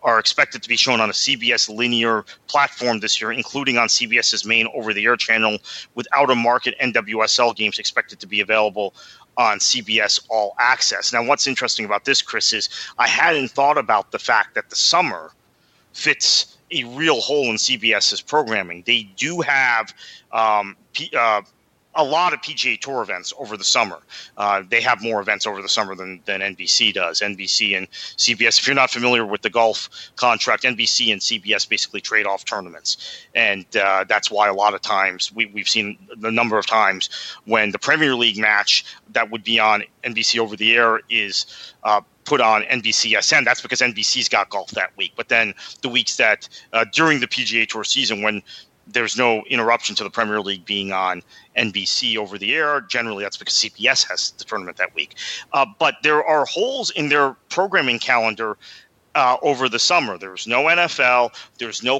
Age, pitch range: 30-49, 105-125 Hz